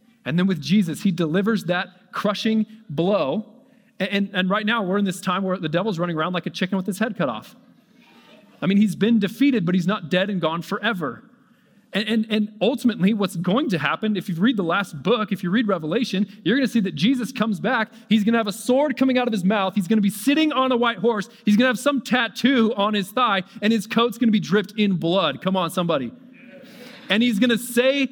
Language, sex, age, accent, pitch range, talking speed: English, male, 30-49, American, 180-235 Hz, 245 wpm